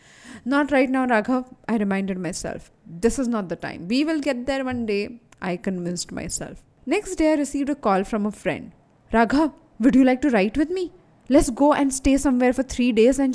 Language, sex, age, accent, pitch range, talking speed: English, female, 20-39, Indian, 215-280 Hz, 210 wpm